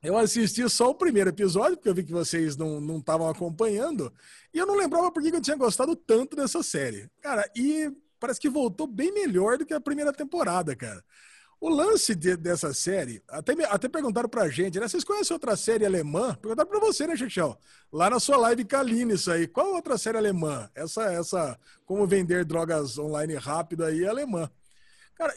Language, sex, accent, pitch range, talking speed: Portuguese, male, Brazilian, 180-275 Hz, 195 wpm